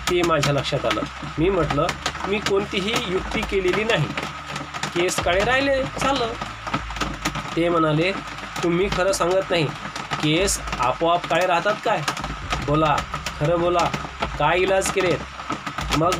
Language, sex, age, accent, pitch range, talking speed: Marathi, male, 30-49, native, 160-195 Hz, 120 wpm